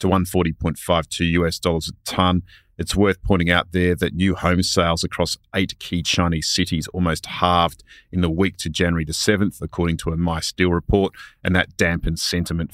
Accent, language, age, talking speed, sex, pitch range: Australian, English, 40-59, 185 wpm, male, 85-95 Hz